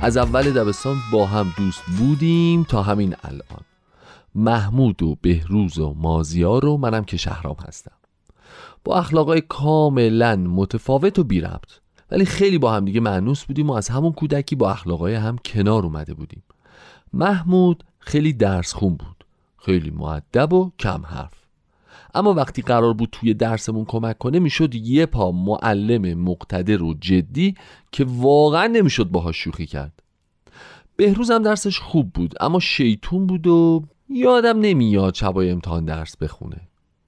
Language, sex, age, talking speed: Persian, male, 40-59, 145 wpm